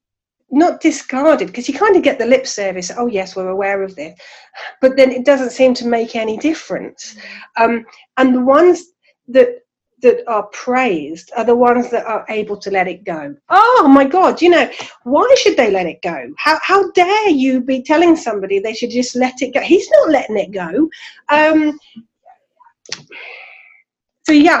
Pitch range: 205-295 Hz